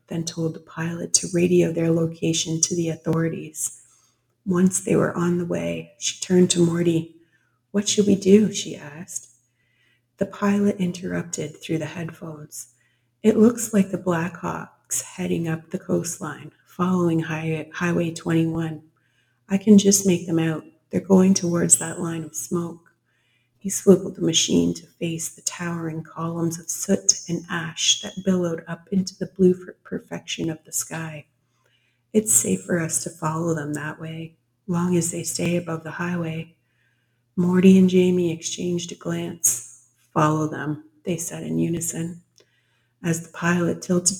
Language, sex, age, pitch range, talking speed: English, female, 30-49, 150-175 Hz, 155 wpm